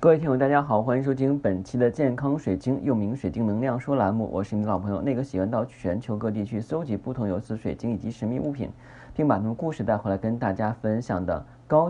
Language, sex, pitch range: Chinese, male, 100-125 Hz